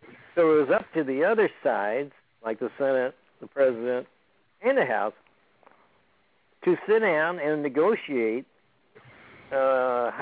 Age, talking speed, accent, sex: 60-79, 130 wpm, American, male